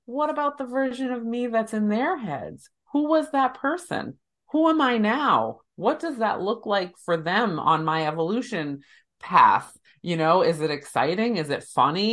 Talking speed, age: 185 wpm, 30-49